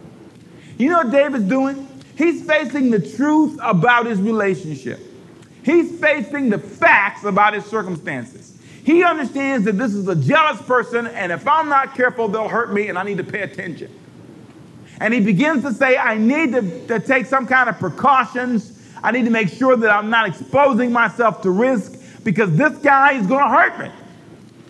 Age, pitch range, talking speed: 40-59, 220-310 Hz, 180 wpm